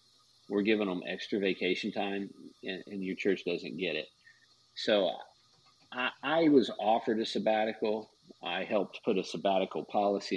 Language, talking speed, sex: English, 145 wpm, male